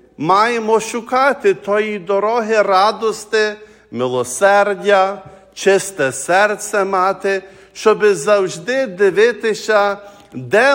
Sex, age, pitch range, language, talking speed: male, 50-69, 175-215 Hz, English, 75 wpm